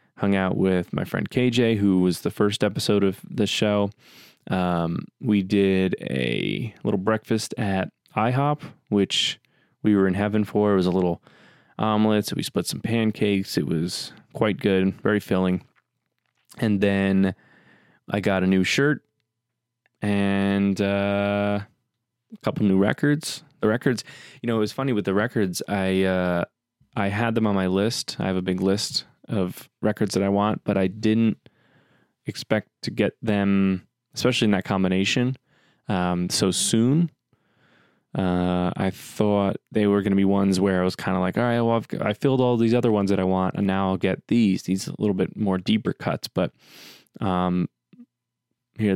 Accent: American